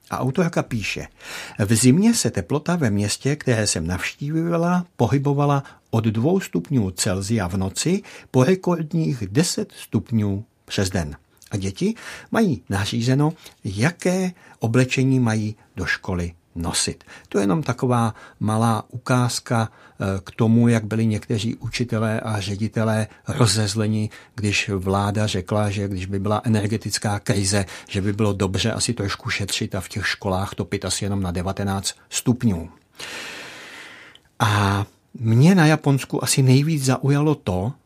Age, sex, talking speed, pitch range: 60-79, male, 135 wpm, 100-135 Hz